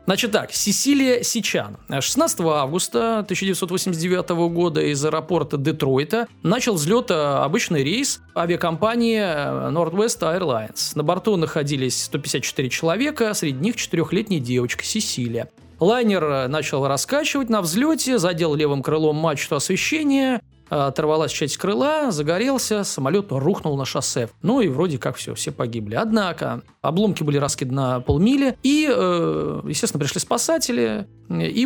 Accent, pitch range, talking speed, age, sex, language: native, 145-210 Hz, 125 wpm, 20-39, male, Russian